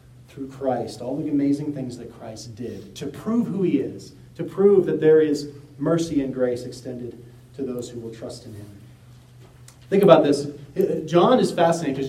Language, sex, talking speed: English, male, 185 wpm